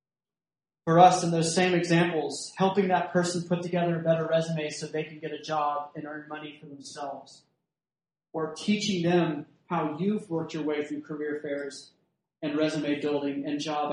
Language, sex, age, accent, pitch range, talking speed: English, male, 30-49, American, 150-175 Hz, 175 wpm